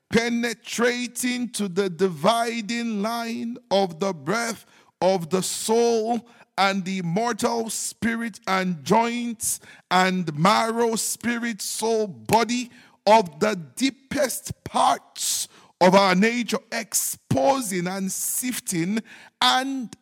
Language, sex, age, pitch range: English, male, 50-69, 150-225 Hz